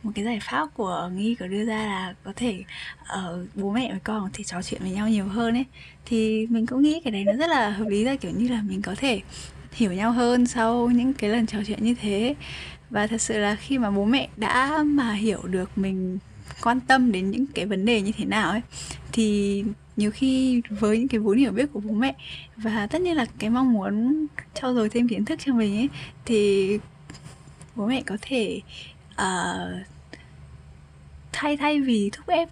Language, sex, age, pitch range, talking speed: Vietnamese, female, 10-29, 200-250 Hz, 215 wpm